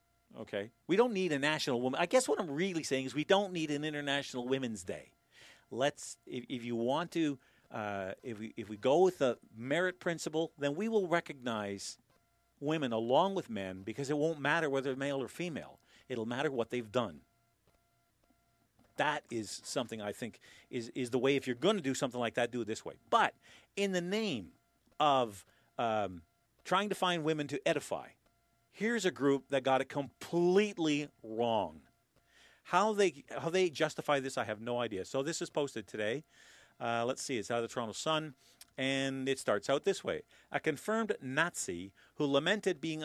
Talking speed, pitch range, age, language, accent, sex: 190 wpm, 125-170 Hz, 40-59, English, American, male